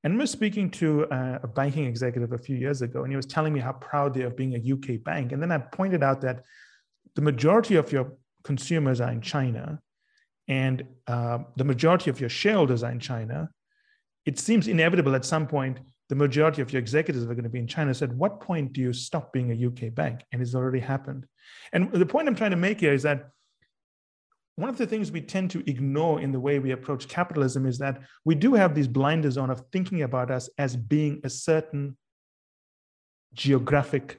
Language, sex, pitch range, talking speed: English, male, 130-160 Hz, 215 wpm